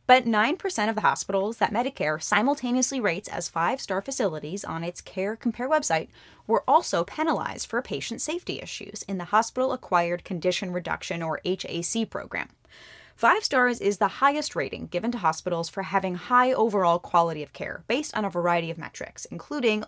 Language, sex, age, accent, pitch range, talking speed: English, female, 20-39, American, 180-235 Hz, 170 wpm